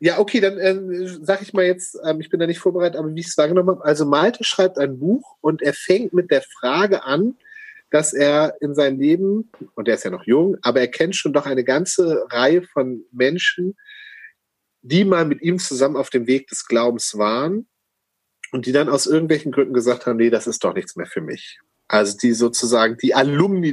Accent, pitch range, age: German, 130-185 Hz, 40-59